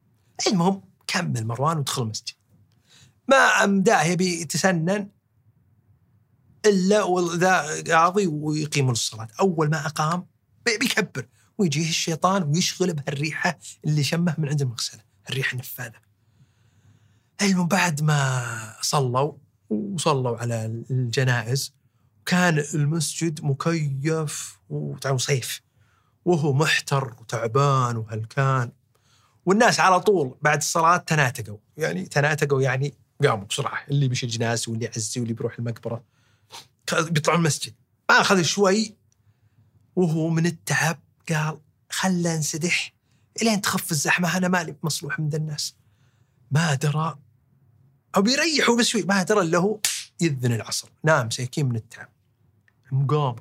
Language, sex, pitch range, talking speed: Arabic, male, 115-165 Hz, 110 wpm